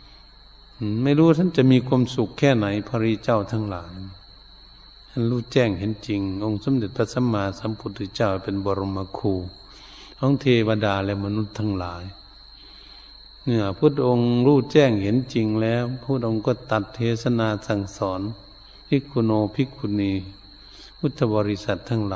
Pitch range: 100-115 Hz